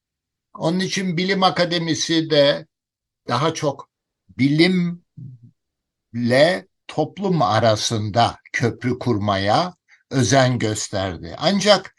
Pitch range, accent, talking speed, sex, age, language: 110-150 Hz, native, 75 wpm, male, 60-79, Turkish